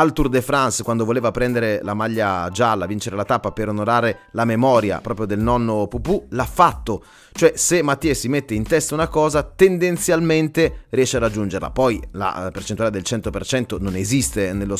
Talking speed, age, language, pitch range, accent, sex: 180 wpm, 30-49, Italian, 100-125 Hz, native, male